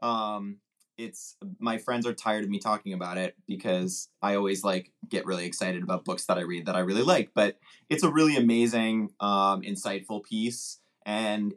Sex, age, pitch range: male, 20-39, 95-115 Hz